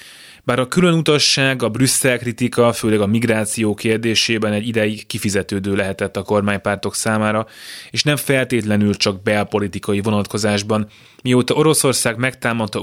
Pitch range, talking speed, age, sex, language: 105-125 Hz, 125 wpm, 20-39, male, Hungarian